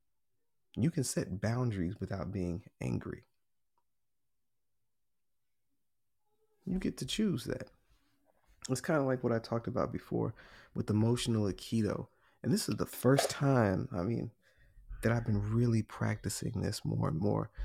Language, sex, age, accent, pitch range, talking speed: English, male, 30-49, American, 105-125 Hz, 140 wpm